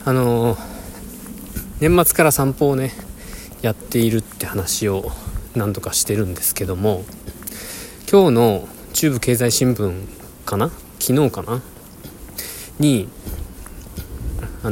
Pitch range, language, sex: 95-125 Hz, Japanese, male